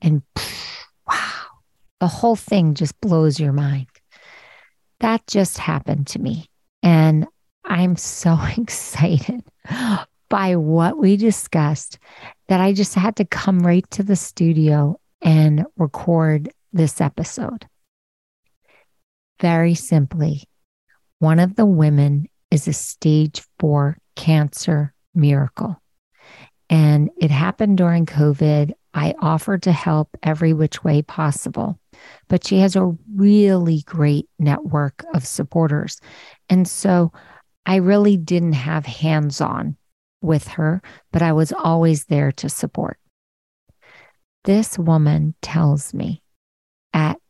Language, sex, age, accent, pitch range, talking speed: English, female, 40-59, American, 150-180 Hz, 115 wpm